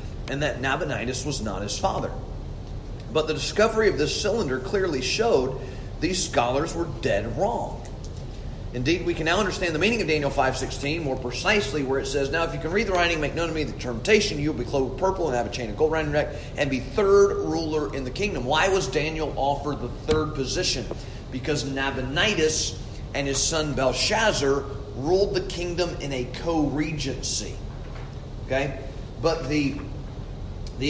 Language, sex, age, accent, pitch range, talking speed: English, male, 30-49, American, 120-155 Hz, 185 wpm